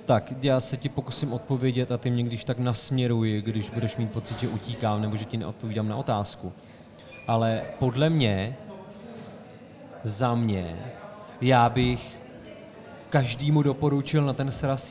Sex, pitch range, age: male, 115-135 Hz, 30-49